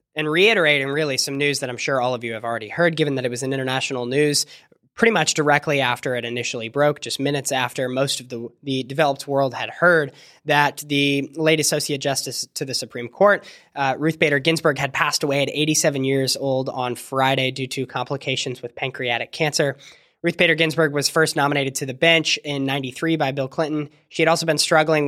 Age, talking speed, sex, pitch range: 20-39, 205 wpm, male, 135-160 Hz